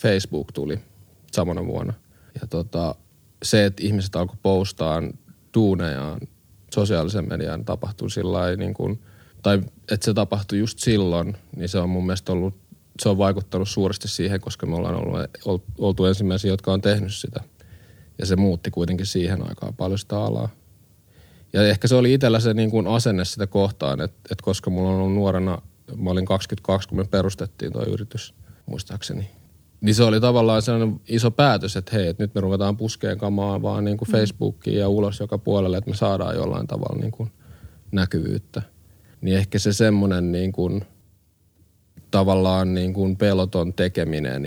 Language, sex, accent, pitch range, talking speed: Finnish, male, native, 95-105 Hz, 165 wpm